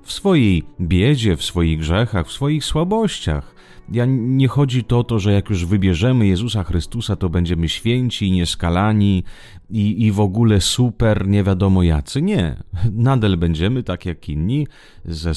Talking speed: 160 wpm